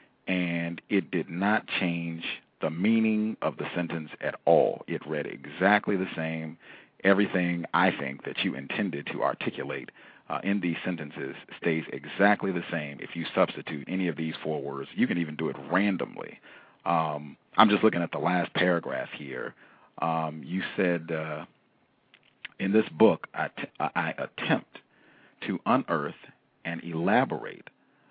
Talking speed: 150 wpm